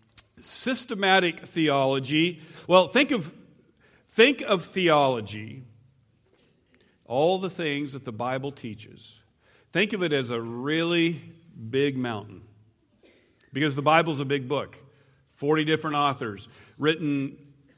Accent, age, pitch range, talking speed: American, 50-69, 135-165 Hz, 110 wpm